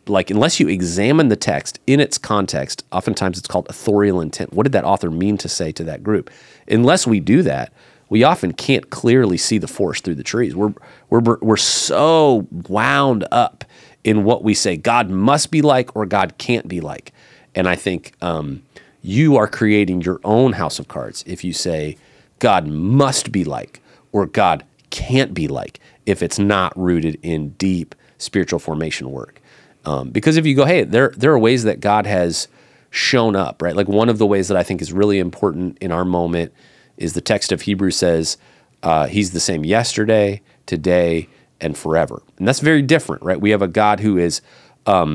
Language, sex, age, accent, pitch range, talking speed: English, male, 30-49, American, 90-115 Hz, 195 wpm